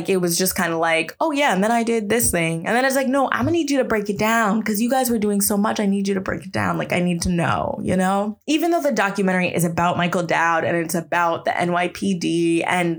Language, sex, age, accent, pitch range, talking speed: English, female, 20-39, American, 175-210 Hz, 295 wpm